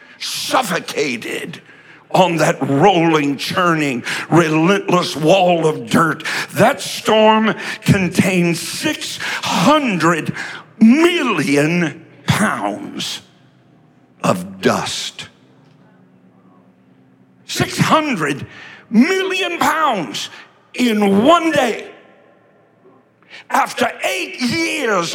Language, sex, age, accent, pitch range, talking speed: English, male, 60-79, American, 145-220 Hz, 60 wpm